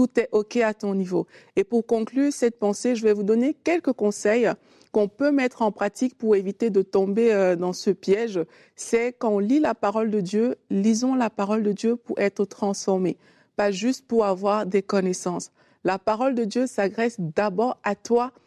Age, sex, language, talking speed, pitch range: 50-69, female, French, 190 wpm, 200-235 Hz